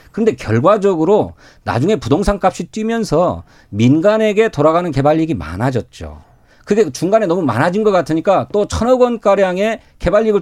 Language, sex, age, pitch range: Korean, male, 40-59, 135-210 Hz